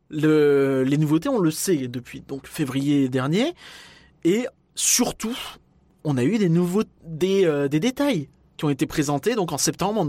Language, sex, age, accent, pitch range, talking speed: French, male, 20-39, French, 145-185 Hz, 170 wpm